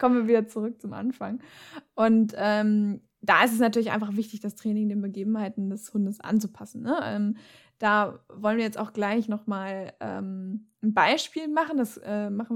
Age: 20-39